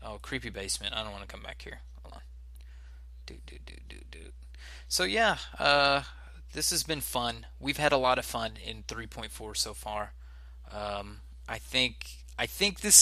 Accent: American